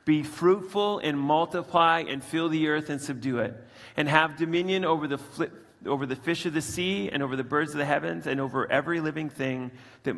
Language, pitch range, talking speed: English, 120-155 Hz, 210 wpm